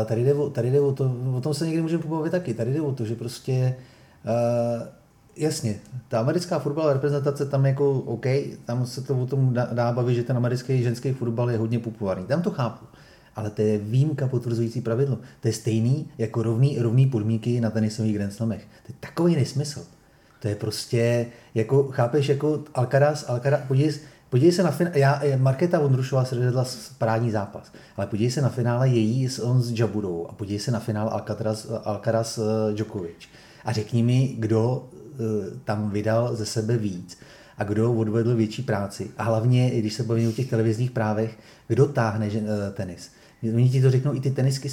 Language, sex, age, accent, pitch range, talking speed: Czech, male, 30-49, native, 110-135 Hz, 185 wpm